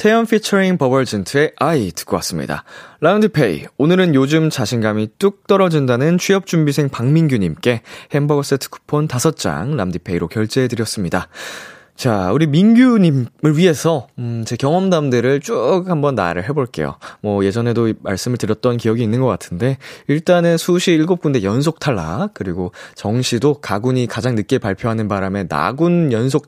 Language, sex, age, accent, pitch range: Korean, male, 20-39, native, 115-170 Hz